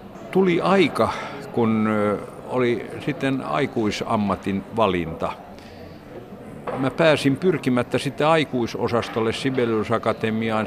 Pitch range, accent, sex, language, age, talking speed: 100-130 Hz, native, male, Finnish, 50-69, 80 wpm